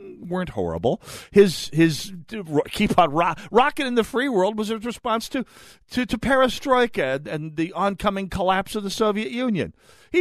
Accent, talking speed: American, 170 wpm